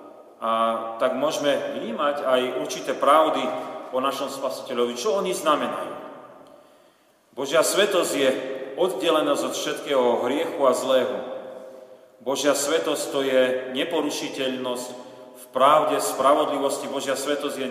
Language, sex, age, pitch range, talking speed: Slovak, male, 40-59, 125-145 Hz, 110 wpm